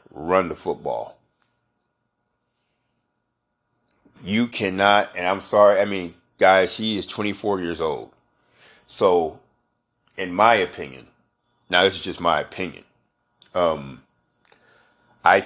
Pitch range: 95-120 Hz